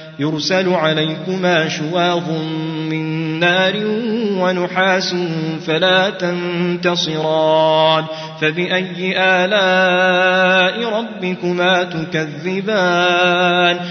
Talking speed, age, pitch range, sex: 50 wpm, 30-49, 185-225 Hz, male